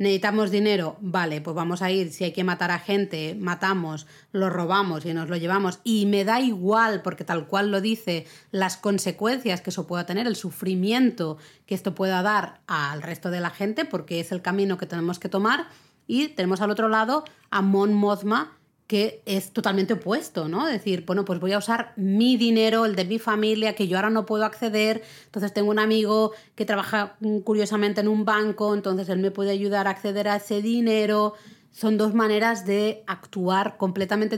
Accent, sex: Spanish, female